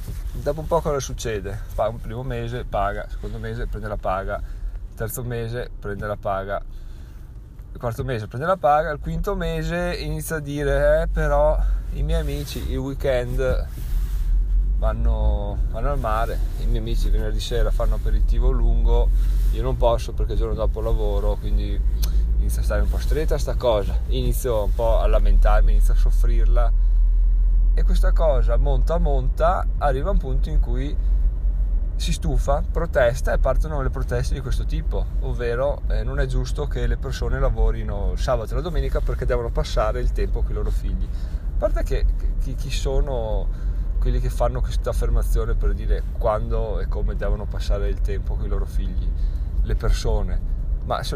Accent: native